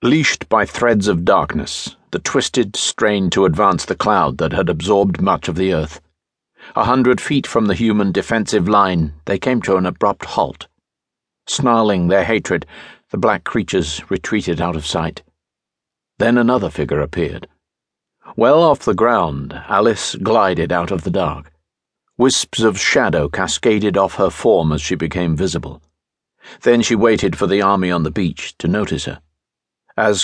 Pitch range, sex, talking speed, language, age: 80-110 Hz, male, 160 wpm, English, 50-69